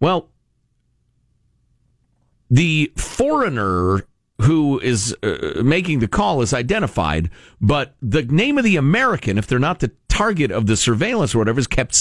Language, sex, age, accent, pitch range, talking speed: English, male, 50-69, American, 110-170 Hz, 145 wpm